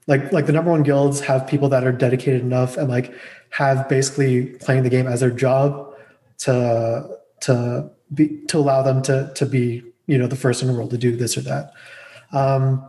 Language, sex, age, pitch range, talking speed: English, male, 20-39, 125-145 Hz, 205 wpm